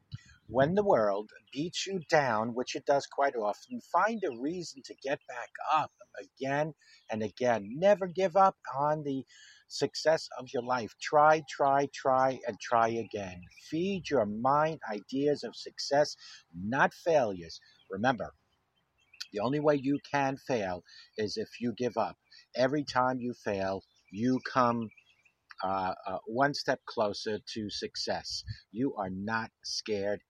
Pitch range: 105-145 Hz